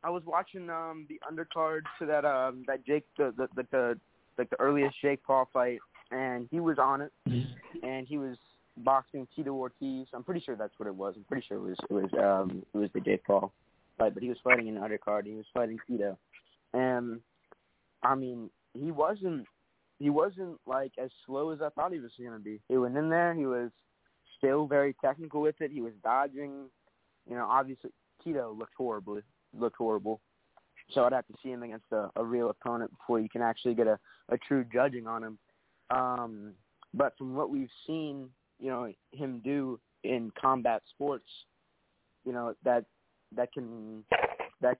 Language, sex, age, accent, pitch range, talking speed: English, male, 20-39, American, 115-140 Hz, 195 wpm